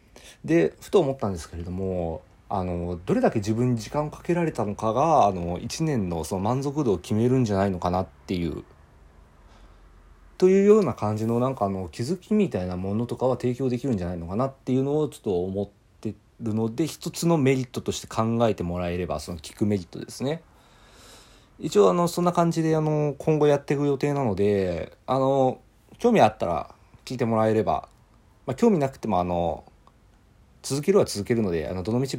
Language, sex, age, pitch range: Japanese, male, 40-59, 95-135 Hz